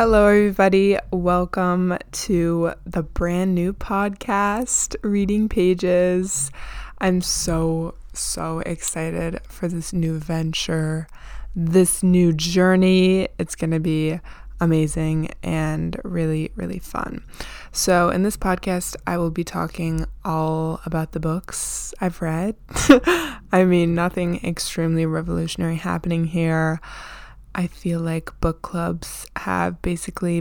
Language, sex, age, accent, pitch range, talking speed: English, female, 20-39, American, 165-185 Hz, 115 wpm